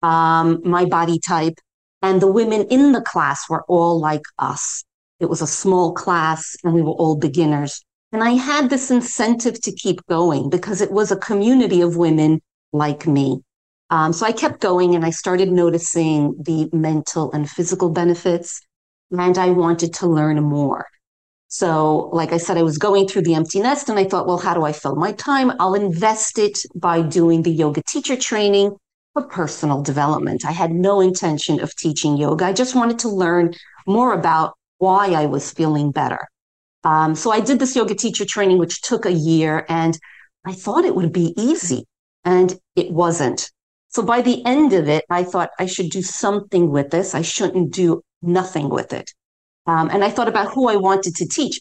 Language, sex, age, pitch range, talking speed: English, female, 40-59, 160-200 Hz, 190 wpm